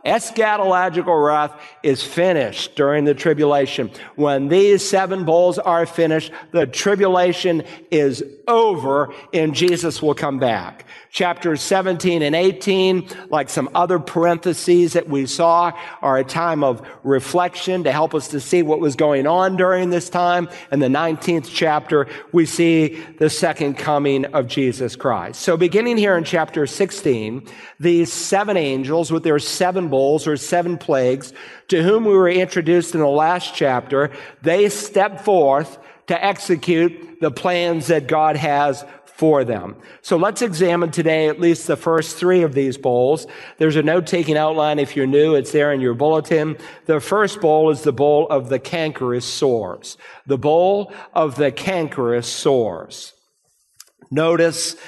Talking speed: 150 wpm